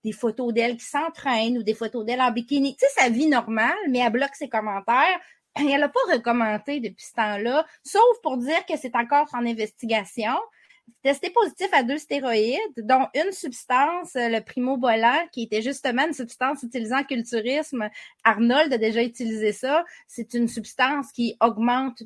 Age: 30-49